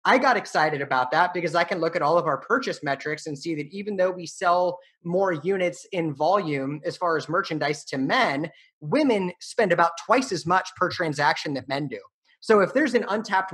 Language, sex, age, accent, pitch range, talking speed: English, male, 30-49, American, 155-195 Hz, 215 wpm